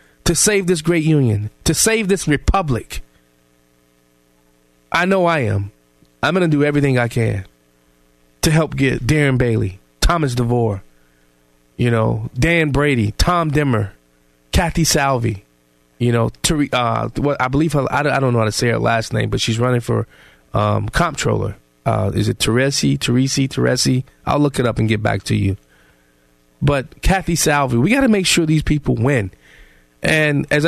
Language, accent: English, American